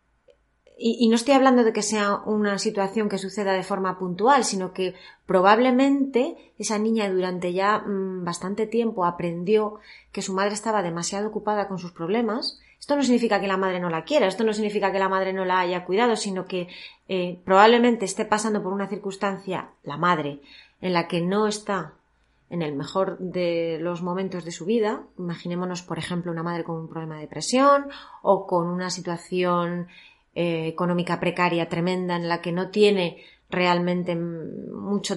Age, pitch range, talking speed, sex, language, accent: 30-49, 175-210 Hz, 175 wpm, female, Spanish, Spanish